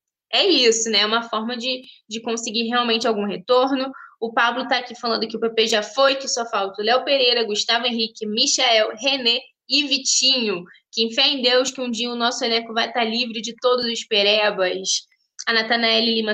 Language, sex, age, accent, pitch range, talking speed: Portuguese, female, 10-29, Brazilian, 215-255 Hz, 200 wpm